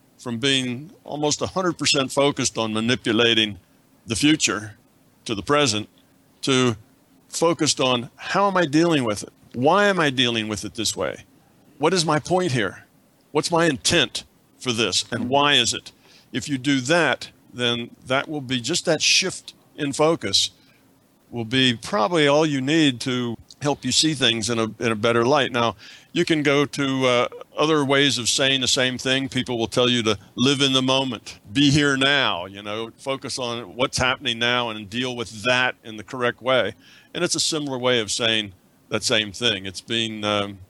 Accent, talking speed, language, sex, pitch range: American, 185 wpm, English, male, 115-145 Hz